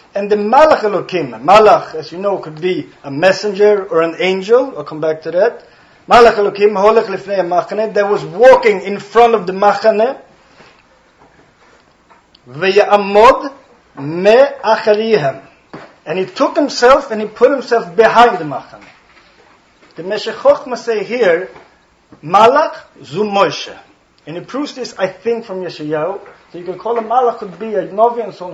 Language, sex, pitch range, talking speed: English, male, 180-235 Hz, 150 wpm